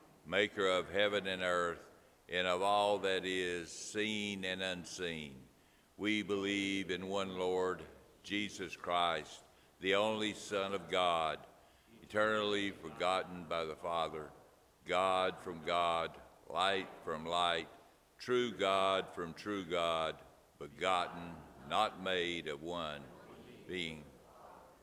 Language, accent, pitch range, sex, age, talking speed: English, American, 85-95 Hz, male, 60-79, 115 wpm